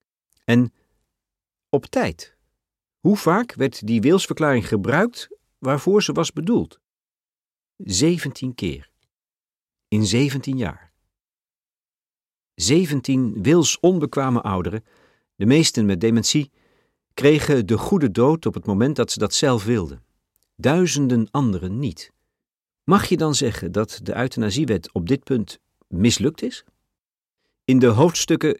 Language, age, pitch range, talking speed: Dutch, 50-69, 110-155 Hz, 115 wpm